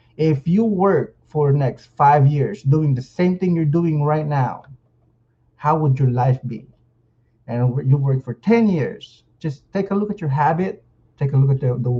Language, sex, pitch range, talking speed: English, male, 125-160 Hz, 200 wpm